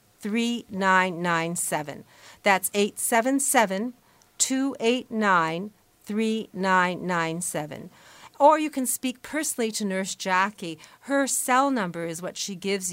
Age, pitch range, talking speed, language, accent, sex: 50-69, 175-235 Hz, 95 wpm, English, American, female